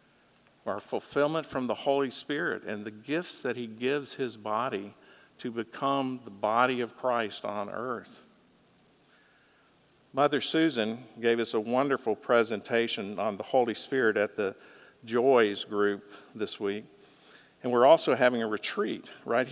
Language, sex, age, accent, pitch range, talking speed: English, male, 50-69, American, 110-125 Hz, 140 wpm